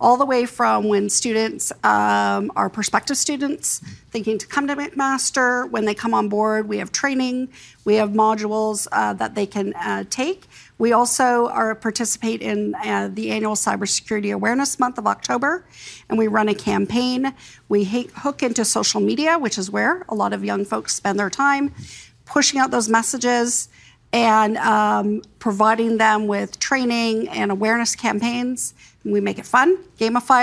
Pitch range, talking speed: 210-255 Hz, 170 wpm